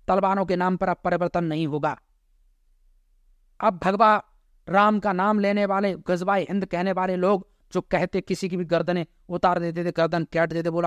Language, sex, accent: Hindi, male, native